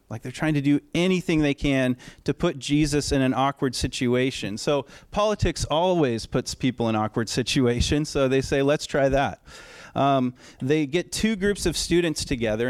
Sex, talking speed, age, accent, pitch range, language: male, 175 wpm, 30-49, American, 120-145 Hz, English